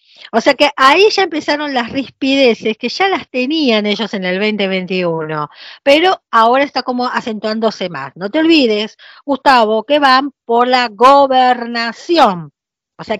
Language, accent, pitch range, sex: Spanish, American, 205-275 Hz, female